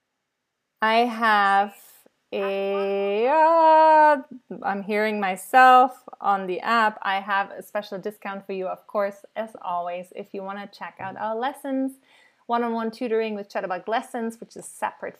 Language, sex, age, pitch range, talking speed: English, female, 30-49, 195-235 Hz, 140 wpm